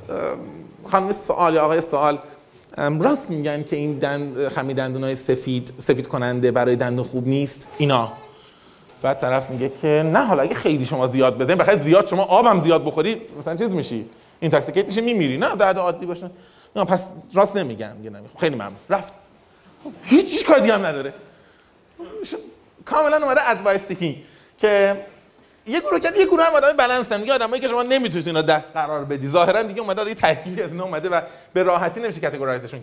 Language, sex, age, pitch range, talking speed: Persian, male, 30-49, 145-210 Hz, 170 wpm